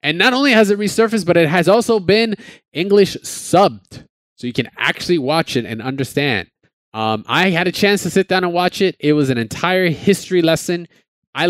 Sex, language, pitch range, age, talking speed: male, English, 105-140 Hz, 20-39, 205 wpm